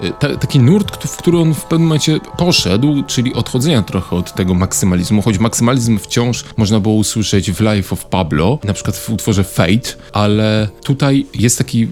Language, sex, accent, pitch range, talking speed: Polish, male, native, 95-120 Hz, 170 wpm